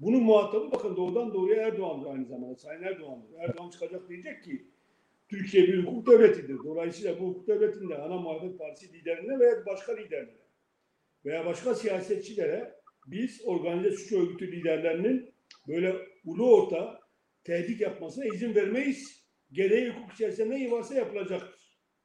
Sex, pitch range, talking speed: male, 185-245 Hz, 135 wpm